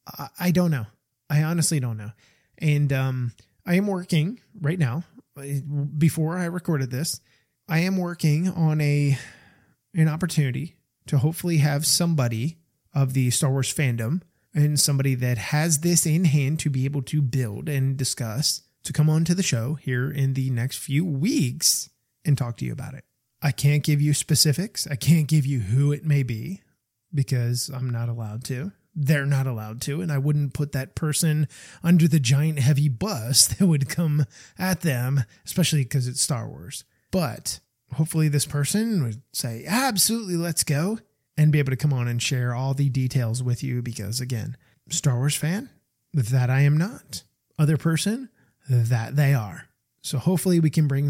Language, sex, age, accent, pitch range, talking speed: English, male, 20-39, American, 125-155 Hz, 175 wpm